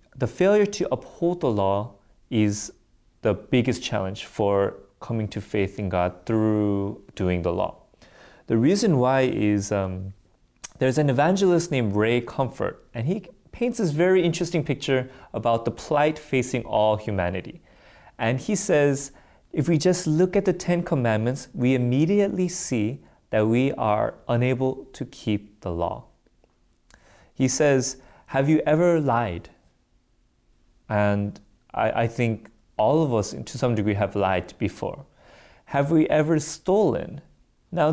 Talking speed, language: 140 wpm, English